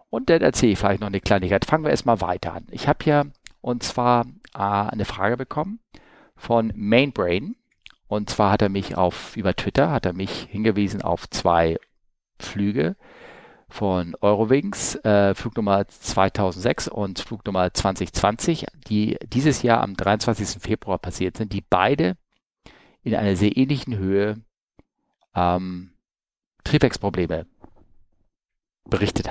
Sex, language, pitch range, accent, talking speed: male, German, 95-125 Hz, German, 135 wpm